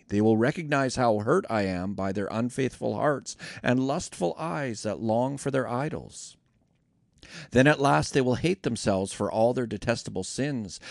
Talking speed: 170 wpm